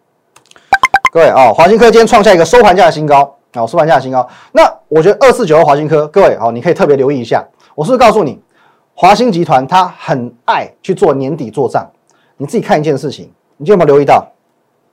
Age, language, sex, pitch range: 30-49, Chinese, male, 135-200 Hz